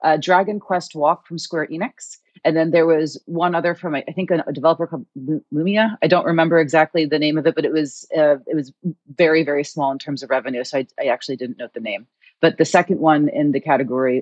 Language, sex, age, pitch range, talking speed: English, female, 30-49, 145-175 Hz, 235 wpm